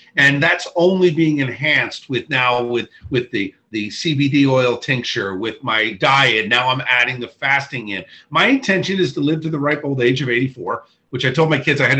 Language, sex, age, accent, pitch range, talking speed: English, male, 50-69, American, 130-175 Hz, 210 wpm